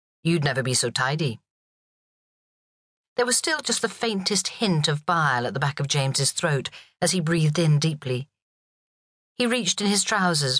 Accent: British